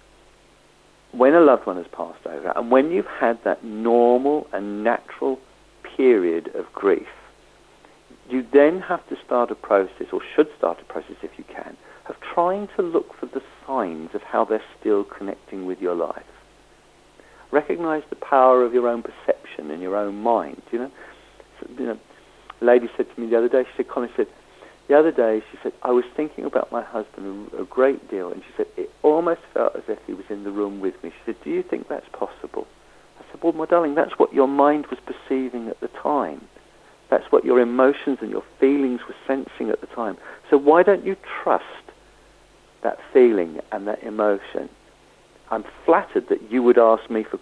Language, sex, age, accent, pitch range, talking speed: English, male, 50-69, British, 120-195 Hz, 195 wpm